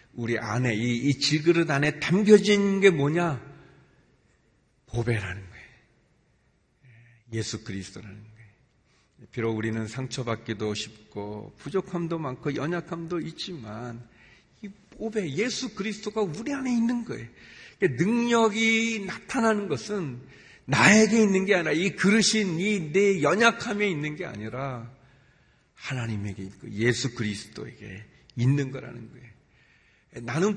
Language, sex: Korean, male